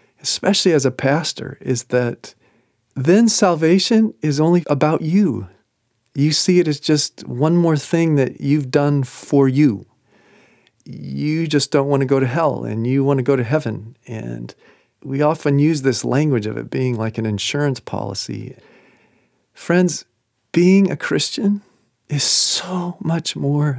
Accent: American